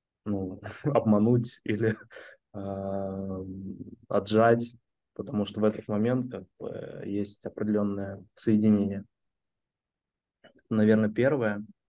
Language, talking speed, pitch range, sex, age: Russian, 80 wpm, 105-115 Hz, male, 20-39